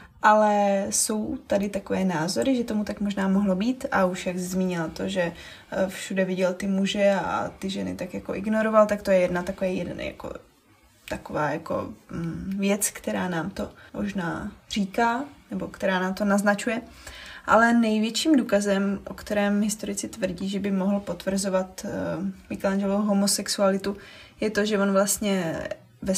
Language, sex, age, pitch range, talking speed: Czech, female, 20-39, 190-210 Hz, 155 wpm